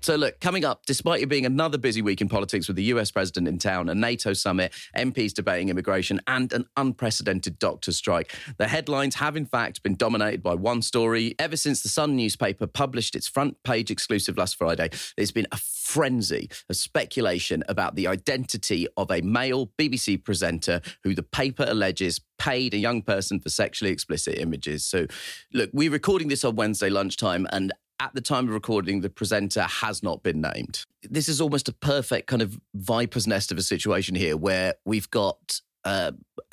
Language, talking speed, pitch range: English, 185 wpm, 100-130 Hz